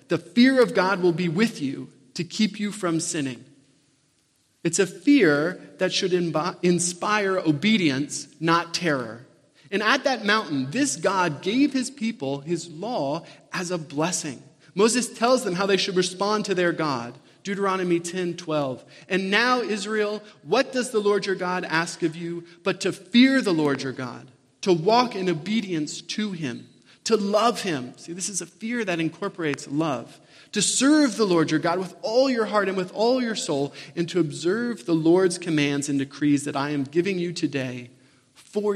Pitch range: 145-200 Hz